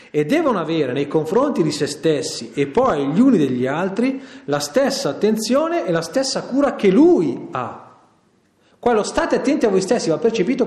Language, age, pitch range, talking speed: Italian, 40-59, 140-225 Hz, 180 wpm